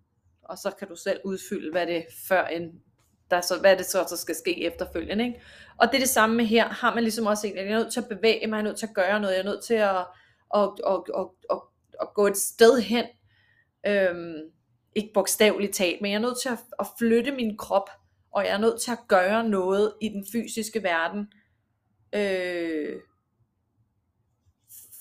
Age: 30-49